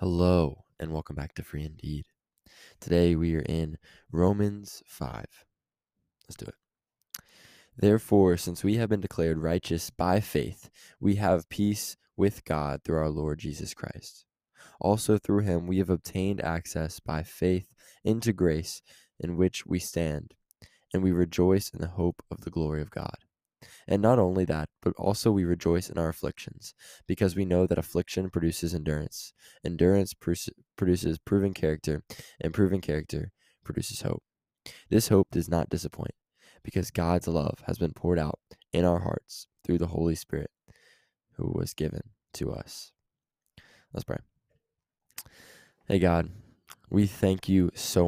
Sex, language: male, English